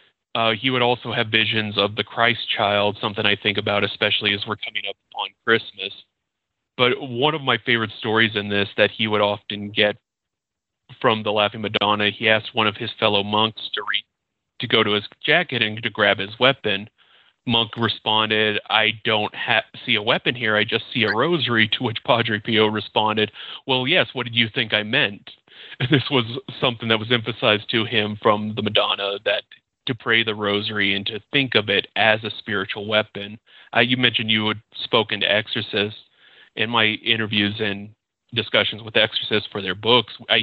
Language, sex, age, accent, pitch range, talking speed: English, male, 30-49, American, 105-115 Hz, 195 wpm